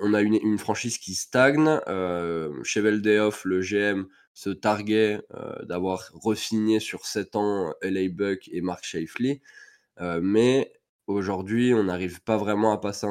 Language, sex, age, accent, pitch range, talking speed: French, male, 20-39, French, 95-120 Hz, 150 wpm